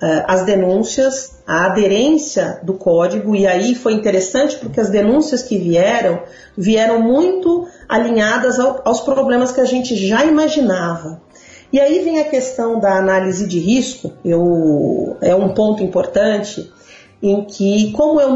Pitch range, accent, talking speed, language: 195-260 Hz, Brazilian, 135 wpm, Portuguese